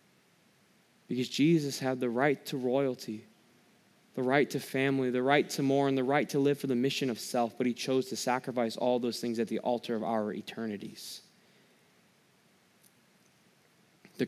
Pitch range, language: 120-150 Hz, English